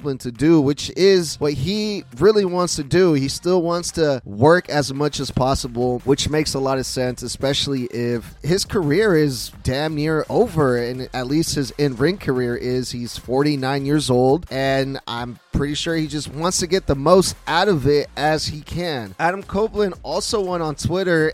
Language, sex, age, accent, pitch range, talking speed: English, male, 30-49, American, 135-170 Hz, 190 wpm